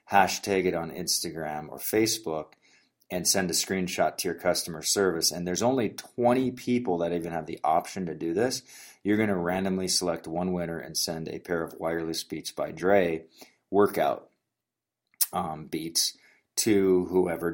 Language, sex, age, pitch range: English, male, 30-49, 85-105 Hz